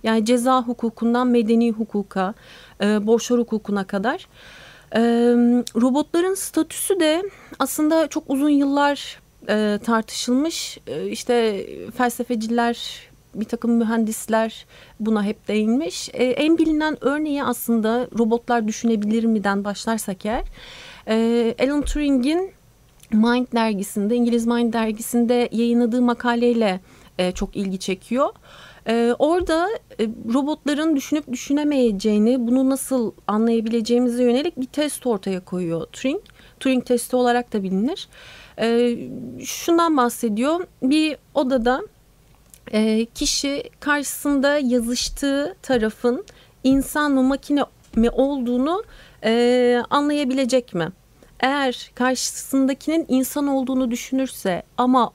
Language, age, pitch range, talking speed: Turkish, 40-59, 225-275 Hz, 105 wpm